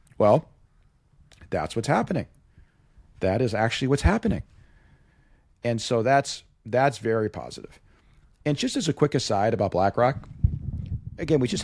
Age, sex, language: 40-59, male, English